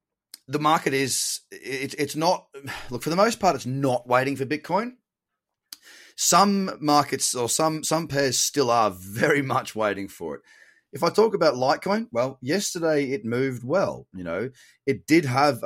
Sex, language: male, English